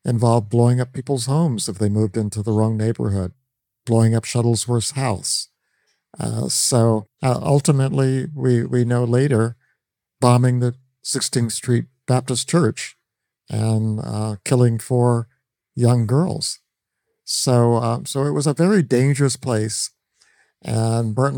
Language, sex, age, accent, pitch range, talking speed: English, male, 50-69, American, 110-130 Hz, 130 wpm